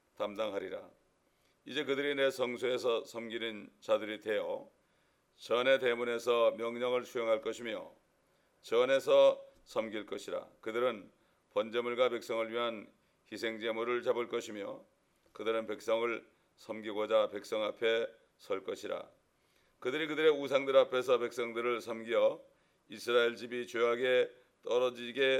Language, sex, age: English, male, 40-59